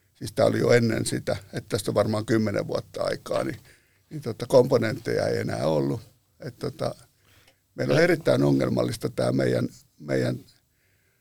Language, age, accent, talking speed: Finnish, 60-79, native, 150 wpm